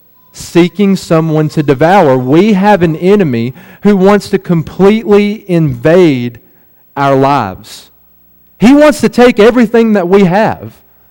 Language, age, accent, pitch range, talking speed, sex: English, 40-59, American, 140-210 Hz, 125 wpm, male